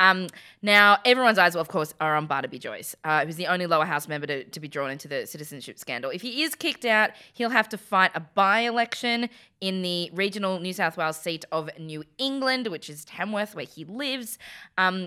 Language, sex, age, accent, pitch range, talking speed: English, female, 20-39, Australian, 160-205 Hz, 210 wpm